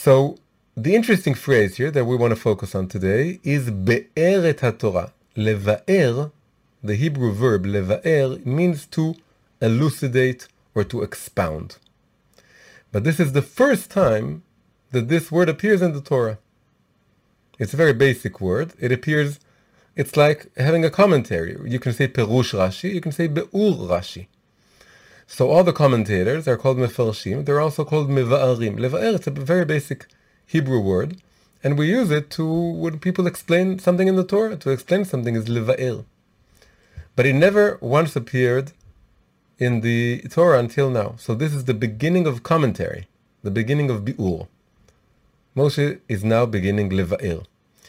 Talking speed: 155 wpm